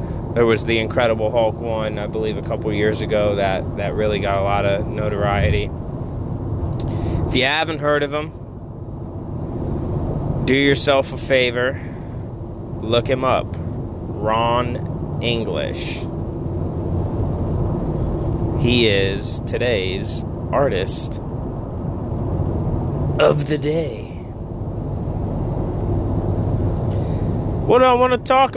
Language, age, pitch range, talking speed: English, 30-49, 105-125 Hz, 100 wpm